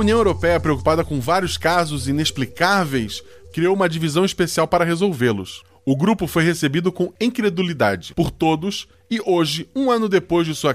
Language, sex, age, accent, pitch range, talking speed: Portuguese, male, 20-39, Brazilian, 125-180 Hz, 160 wpm